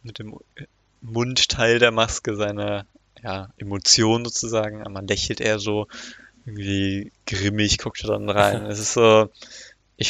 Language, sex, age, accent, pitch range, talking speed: German, male, 20-39, German, 100-120 Hz, 145 wpm